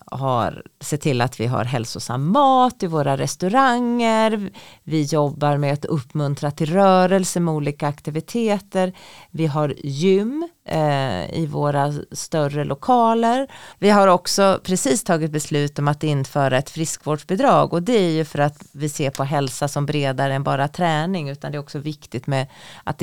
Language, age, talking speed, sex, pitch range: Swedish, 30-49, 160 wpm, female, 140-175 Hz